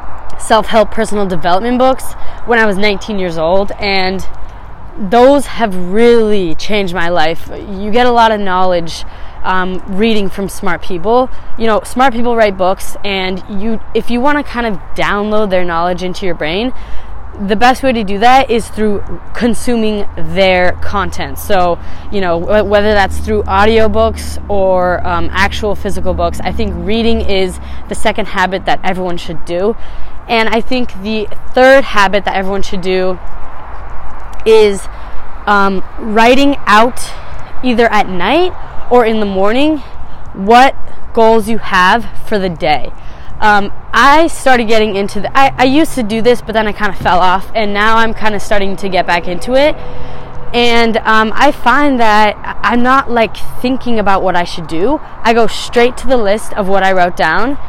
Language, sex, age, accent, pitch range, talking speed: English, female, 20-39, American, 190-235 Hz, 170 wpm